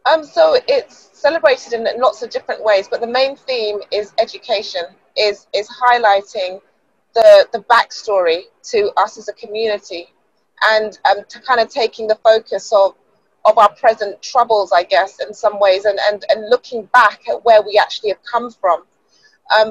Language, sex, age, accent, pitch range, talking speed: English, female, 30-49, British, 210-260 Hz, 175 wpm